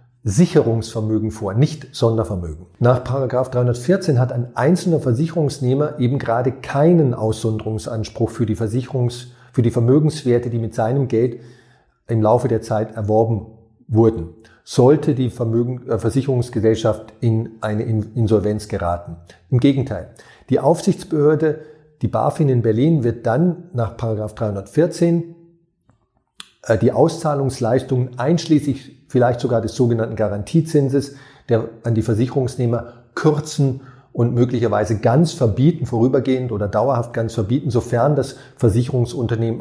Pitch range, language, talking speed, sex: 110-135 Hz, German, 110 wpm, male